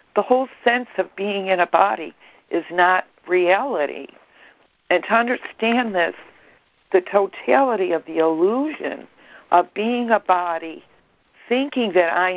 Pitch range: 170-195 Hz